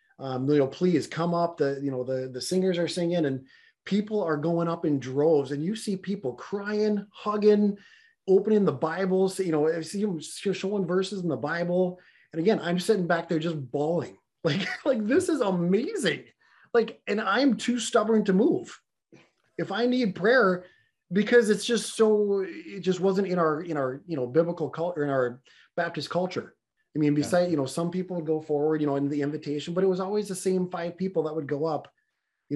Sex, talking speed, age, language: male, 205 wpm, 30-49, English